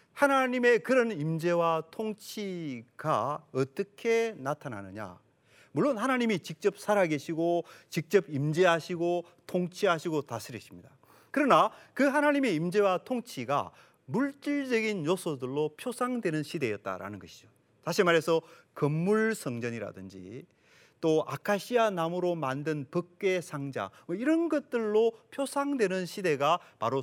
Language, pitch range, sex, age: Korean, 135-220 Hz, male, 40-59